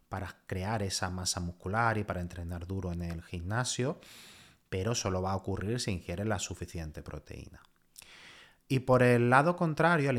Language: Spanish